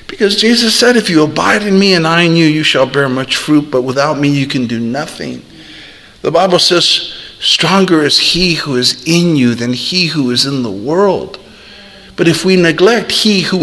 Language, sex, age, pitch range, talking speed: English, male, 50-69, 110-170 Hz, 205 wpm